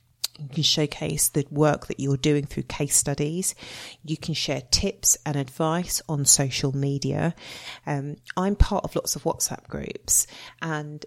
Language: English